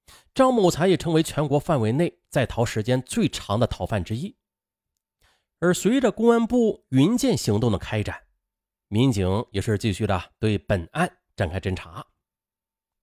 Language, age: Chinese, 30-49